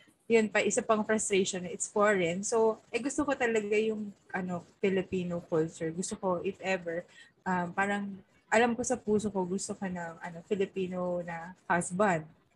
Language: Filipino